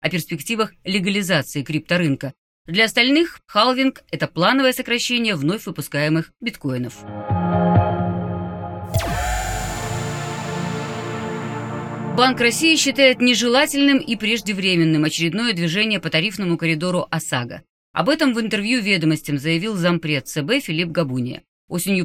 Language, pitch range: Russian, 155-215 Hz